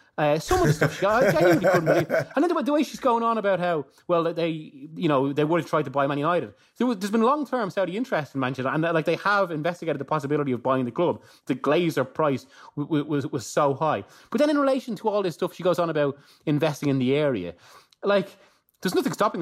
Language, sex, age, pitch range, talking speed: English, male, 30-49, 130-175 Hz, 255 wpm